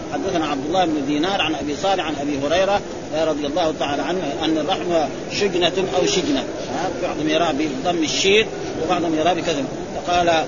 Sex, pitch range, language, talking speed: male, 180-270 Hz, Arabic, 160 wpm